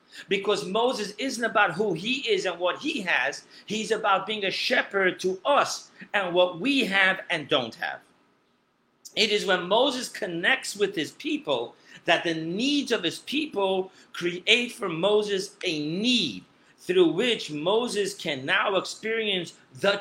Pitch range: 170-225 Hz